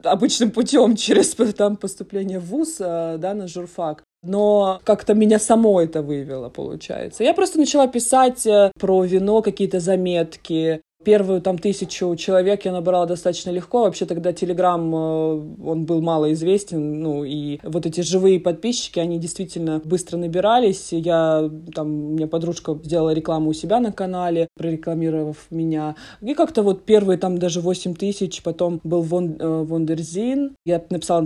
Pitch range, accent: 165-200 Hz, native